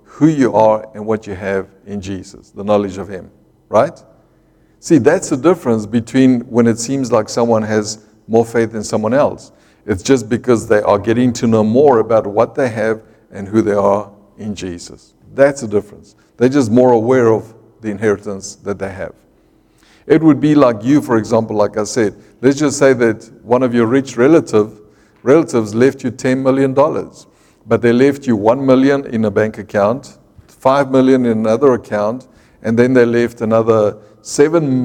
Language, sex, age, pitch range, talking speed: English, male, 60-79, 110-130 Hz, 185 wpm